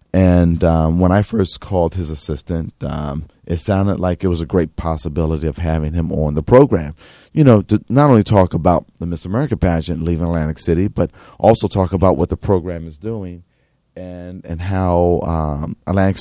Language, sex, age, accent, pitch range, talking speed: English, male, 40-59, American, 80-95 Hz, 190 wpm